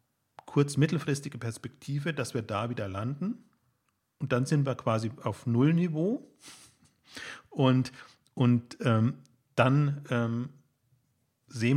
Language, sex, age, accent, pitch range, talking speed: German, male, 40-59, German, 110-135 Hz, 100 wpm